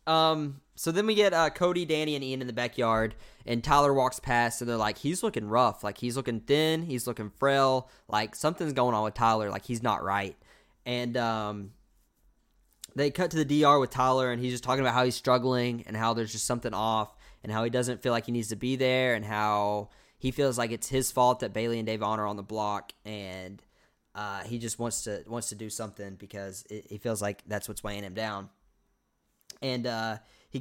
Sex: male